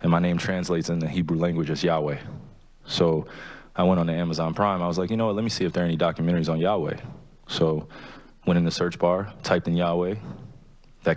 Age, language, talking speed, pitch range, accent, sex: 20-39, English, 230 wpm, 80-90 Hz, American, male